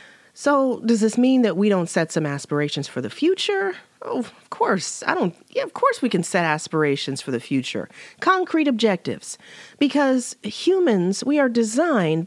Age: 40-59